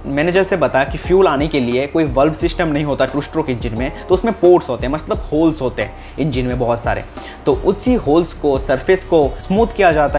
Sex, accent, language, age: male, native, Hindi, 20-39